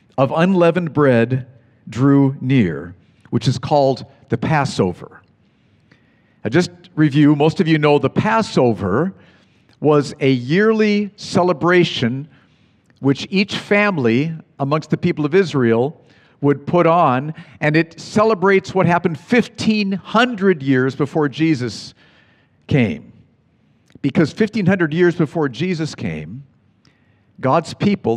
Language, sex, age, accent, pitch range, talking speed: English, male, 50-69, American, 125-175 Hz, 110 wpm